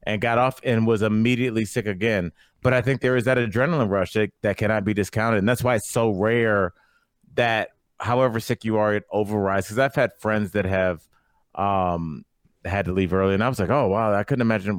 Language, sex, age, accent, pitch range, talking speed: English, male, 30-49, American, 100-125 Hz, 220 wpm